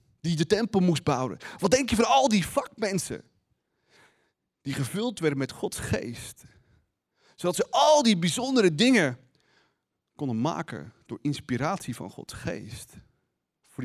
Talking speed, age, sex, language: 140 wpm, 40-59, male, Dutch